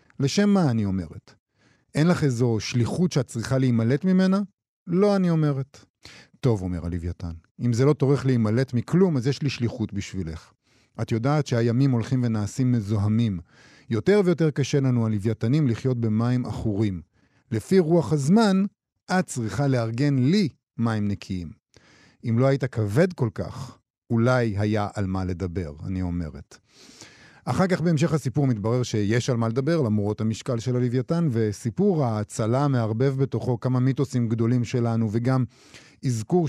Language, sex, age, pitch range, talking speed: Hebrew, male, 50-69, 115-145 Hz, 145 wpm